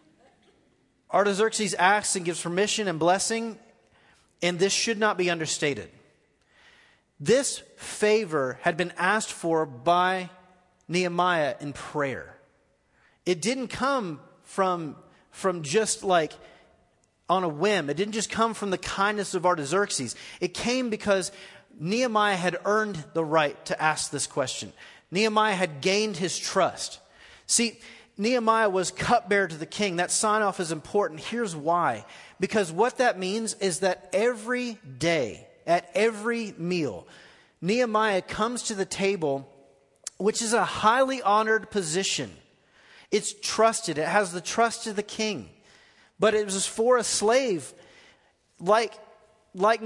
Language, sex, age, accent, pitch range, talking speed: English, male, 30-49, American, 175-220 Hz, 135 wpm